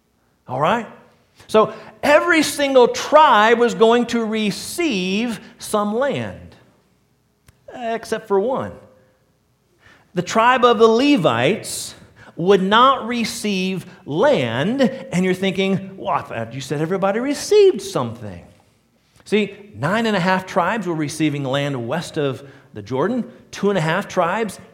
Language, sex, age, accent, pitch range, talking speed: English, male, 40-59, American, 135-215 Hz, 125 wpm